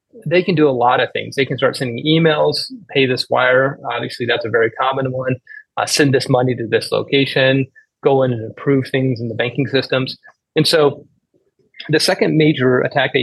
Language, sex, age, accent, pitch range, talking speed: English, male, 30-49, American, 125-155 Hz, 200 wpm